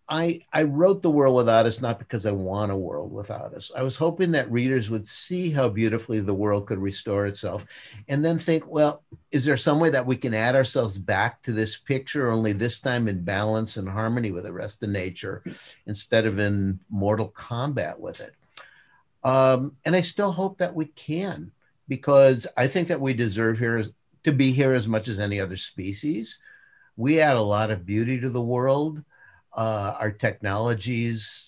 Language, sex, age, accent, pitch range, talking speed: English, male, 50-69, American, 110-150 Hz, 195 wpm